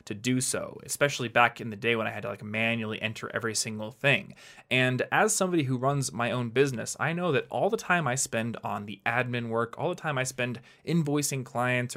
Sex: male